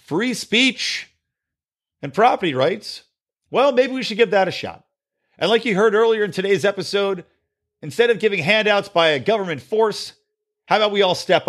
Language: English